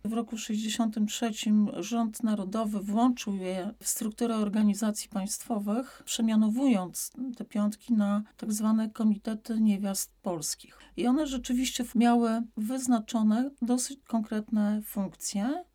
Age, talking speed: 40-59, 105 wpm